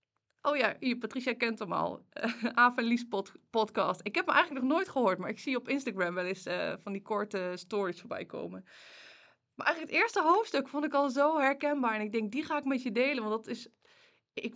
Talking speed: 225 wpm